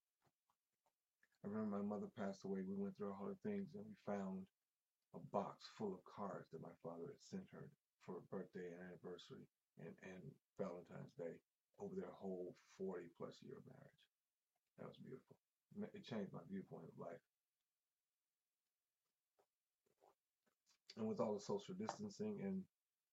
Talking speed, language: 160 wpm, English